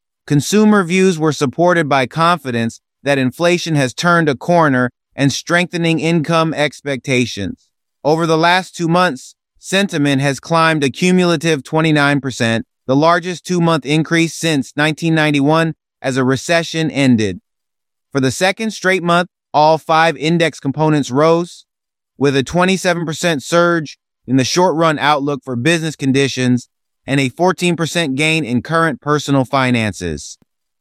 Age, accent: 30-49, American